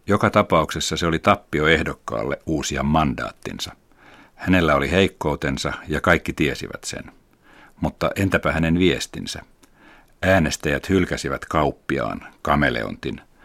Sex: male